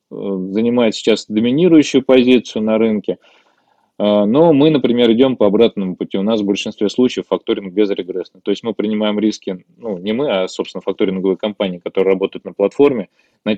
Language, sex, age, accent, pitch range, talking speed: Russian, male, 20-39, native, 105-130 Hz, 170 wpm